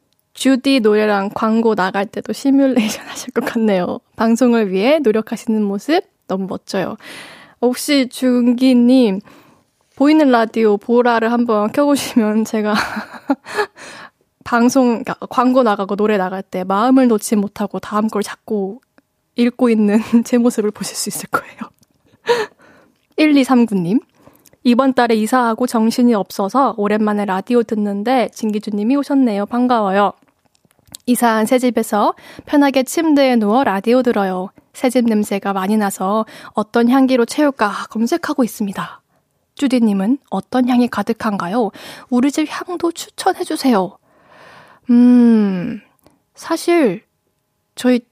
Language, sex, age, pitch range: Korean, female, 20-39, 215-265 Hz